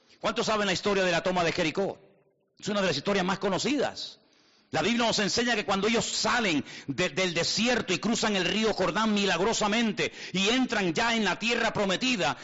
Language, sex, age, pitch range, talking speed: Spanish, male, 50-69, 190-240 Hz, 190 wpm